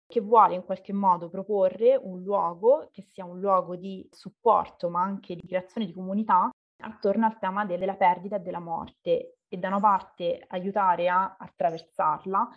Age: 20-39